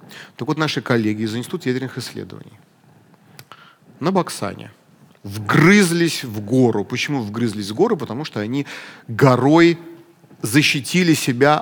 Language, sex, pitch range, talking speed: Russian, male, 115-155 Hz, 120 wpm